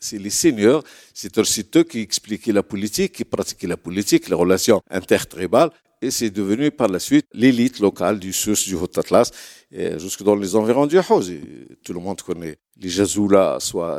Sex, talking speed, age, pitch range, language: male, 180 wpm, 60-79, 100-160 Hz, French